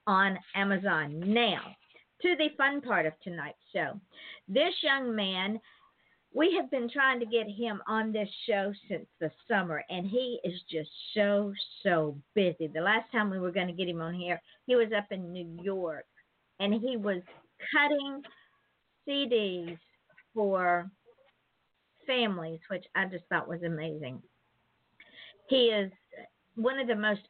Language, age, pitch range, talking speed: English, 50-69, 175-230 Hz, 150 wpm